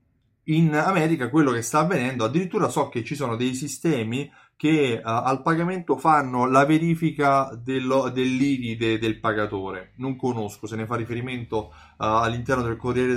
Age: 30-49